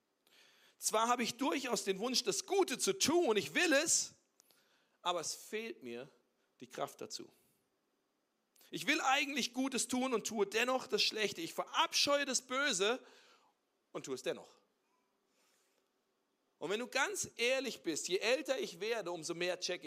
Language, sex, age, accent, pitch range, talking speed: German, male, 40-59, German, 200-270 Hz, 155 wpm